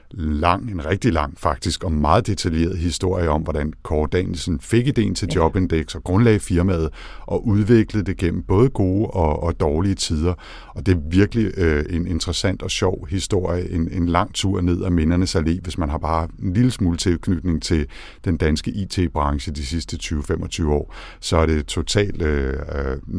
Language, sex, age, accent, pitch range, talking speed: Danish, male, 60-79, native, 80-95 Hz, 180 wpm